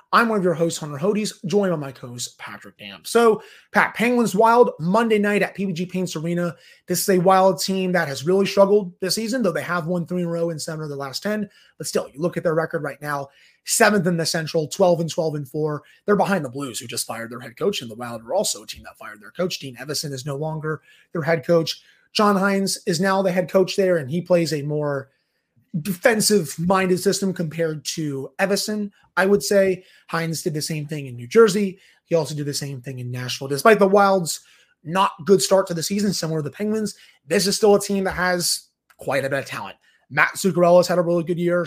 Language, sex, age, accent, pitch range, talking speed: English, male, 30-49, American, 160-195 Hz, 240 wpm